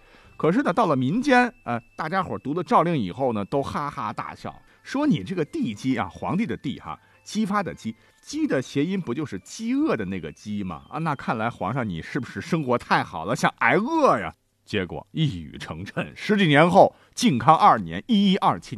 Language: Chinese